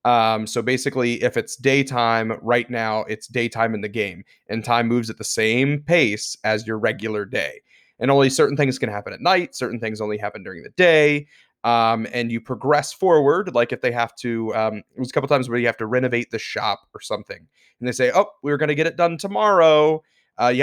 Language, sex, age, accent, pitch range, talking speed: English, male, 30-49, American, 115-145 Hz, 225 wpm